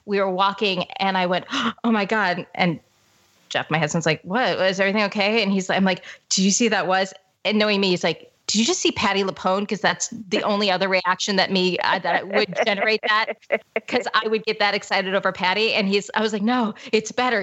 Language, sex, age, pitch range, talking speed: English, female, 30-49, 180-225 Hz, 235 wpm